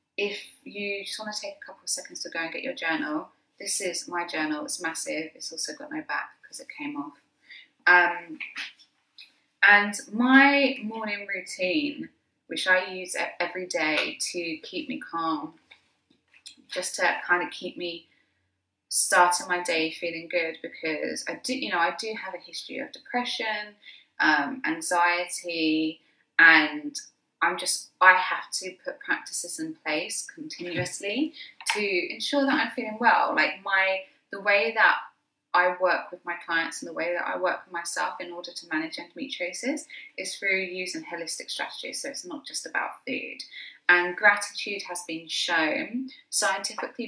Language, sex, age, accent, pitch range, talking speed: English, female, 20-39, British, 175-275 Hz, 160 wpm